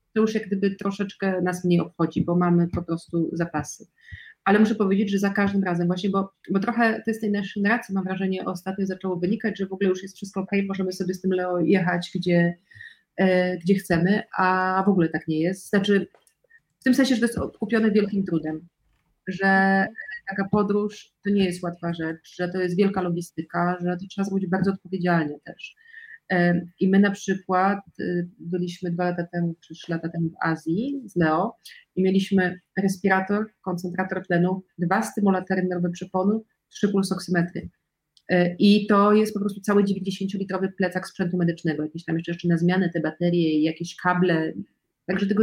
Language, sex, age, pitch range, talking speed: Polish, female, 30-49, 175-200 Hz, 180 wpm